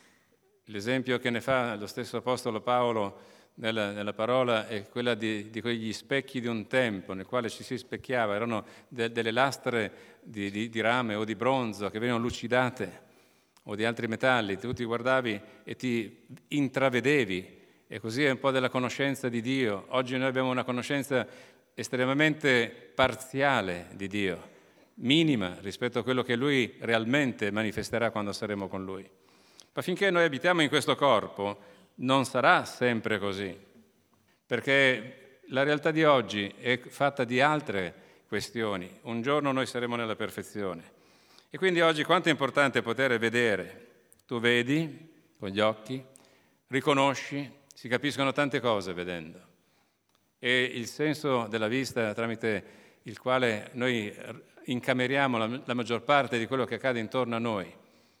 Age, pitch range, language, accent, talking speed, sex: 40-59, 110-130 Hz, Italian, native, 150 wpm, male